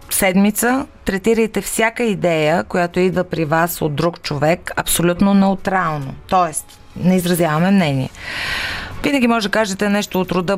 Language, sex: Bulgarian, female